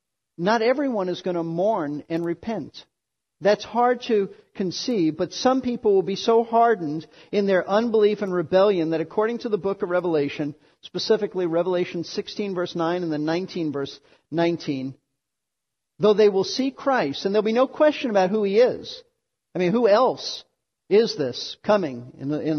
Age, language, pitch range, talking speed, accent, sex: 50-69, English, 170-230 Hz, 165 wpm, American, male